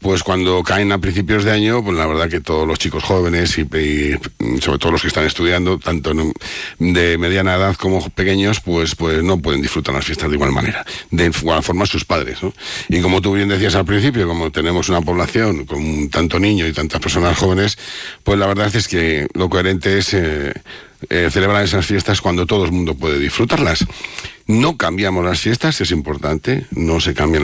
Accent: Spanish